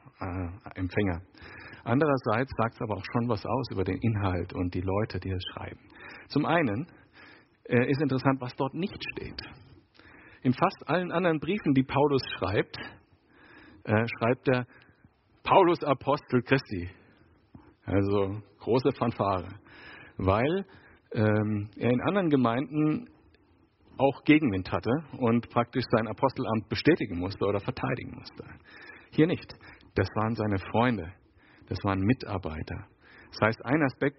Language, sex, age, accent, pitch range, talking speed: German, male, 50-69, German, 105-130 Hz, 135 wpm